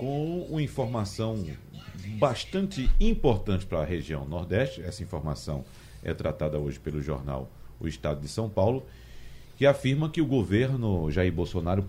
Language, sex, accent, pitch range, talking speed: Portuguese, male, Brazilian, 95-130 Hz, 140 wpm